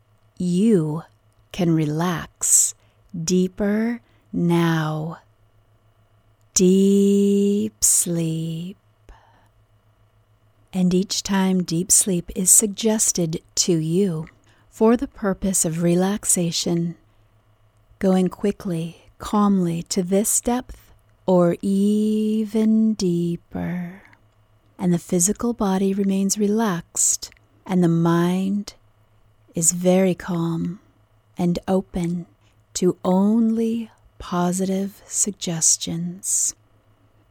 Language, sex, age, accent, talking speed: English, female, 40-59, American, 75 wpm